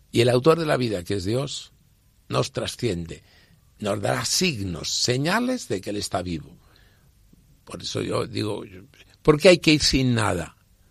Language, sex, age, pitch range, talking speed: Spanish, male, 60-79, 95-130 Hz, 170 wpm